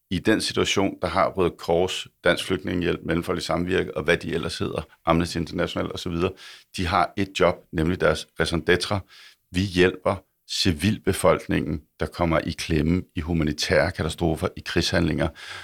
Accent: native